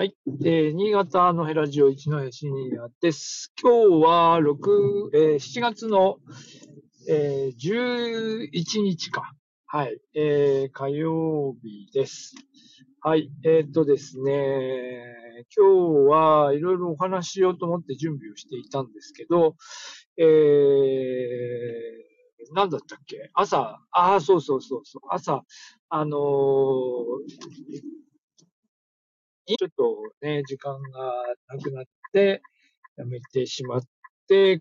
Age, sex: 50-69, male